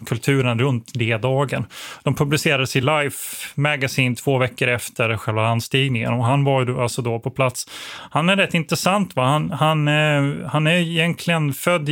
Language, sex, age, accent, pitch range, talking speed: Swedish, male, 30-49, native, 125-145 Hz, 165 wpm